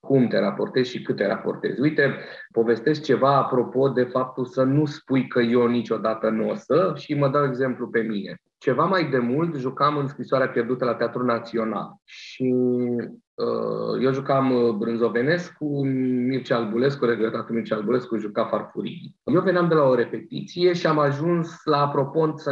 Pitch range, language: 130-175 Hz, Romanian